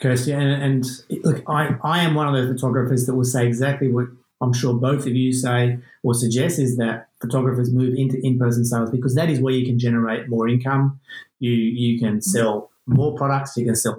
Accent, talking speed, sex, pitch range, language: Australian, 210 wpm, male, 125-145 Hz, English